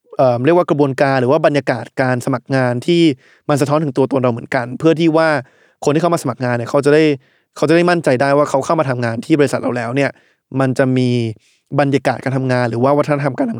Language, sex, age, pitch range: Thai, male, 20-39, 135-165 Hz